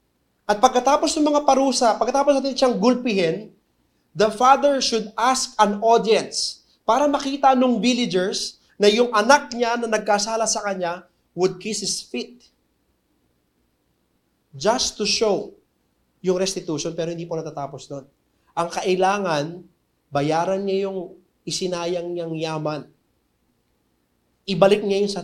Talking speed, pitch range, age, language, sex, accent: 125 wpm, 150-215 Hz, 20-39, English, male, Filipino